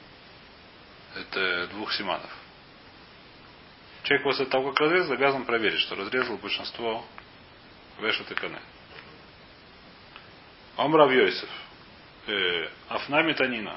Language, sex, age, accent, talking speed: Russian, male, 30-49, native, 75 wpm